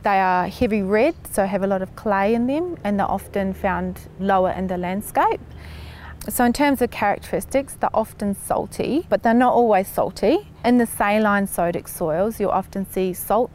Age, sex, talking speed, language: 30-49, female, 185 wpm, English